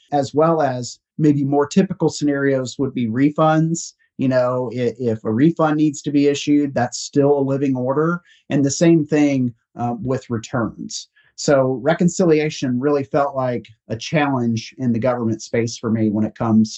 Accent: American